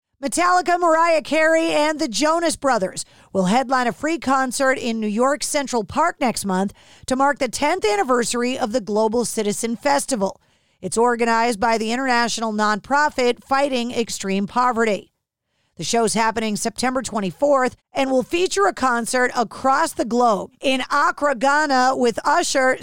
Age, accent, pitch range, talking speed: 40-59, American, 225-285 Hz, 145 wpm